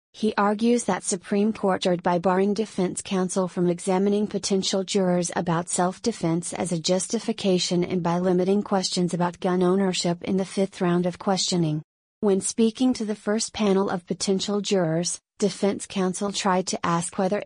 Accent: American